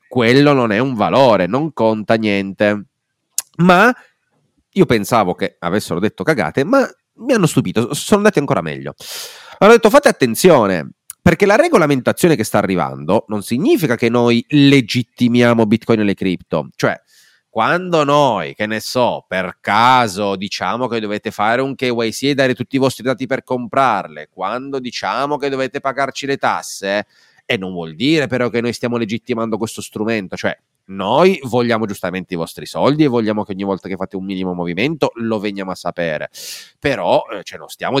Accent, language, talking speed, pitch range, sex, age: native, Italian, 170 wpm, 105-150 Hz, male, 30-49